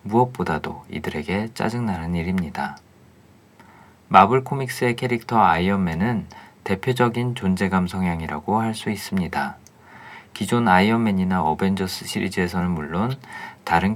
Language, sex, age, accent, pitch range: Korean, male, 40-59, native, 90-115 Hz